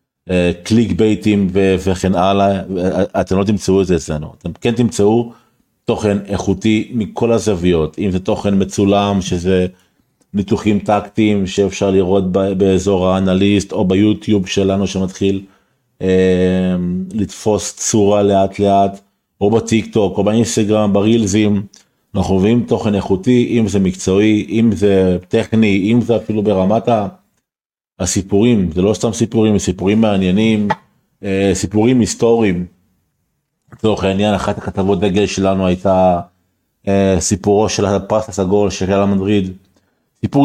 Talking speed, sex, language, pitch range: 125 wpm, male, Hebrew, 95-110 Hz